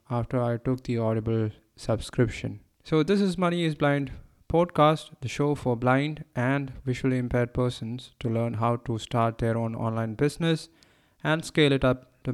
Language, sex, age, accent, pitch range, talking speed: English, male, 20-39, Indian, 115-145 Hz, 170 wpm